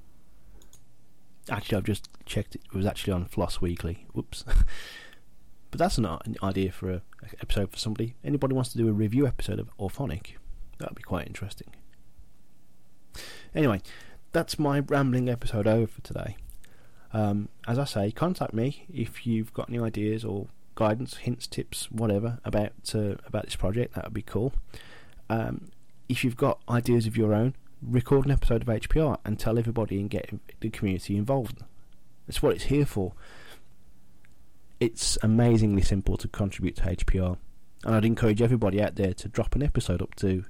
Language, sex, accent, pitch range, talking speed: English, male, British, 100-125 Hz, 170 wpm